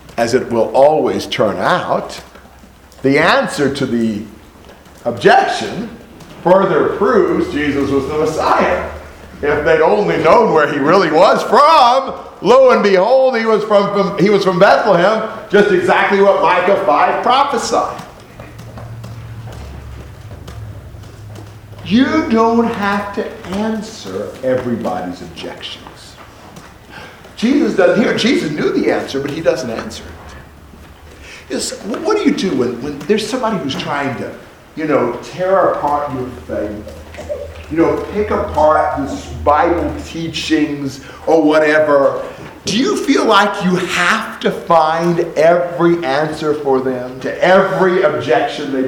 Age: 50-69